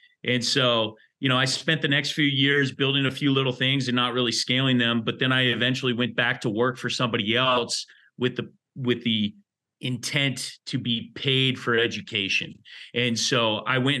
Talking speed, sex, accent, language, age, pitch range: 195 wpm, male, American, English, 30-49, 120-135 Hz